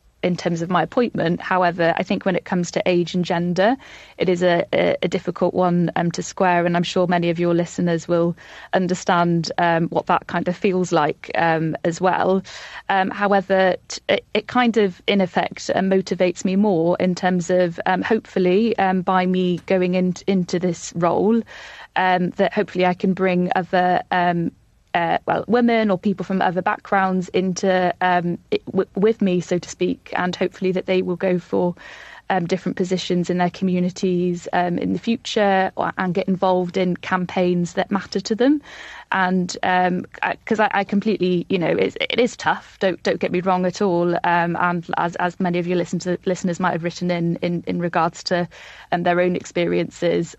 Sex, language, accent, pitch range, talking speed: female, English, British, 175-190 Hz, 195 wpm